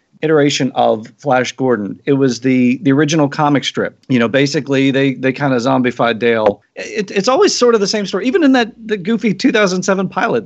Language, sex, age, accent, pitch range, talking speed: English, male, 40-59, American, 115-175 Hz, 200 wpm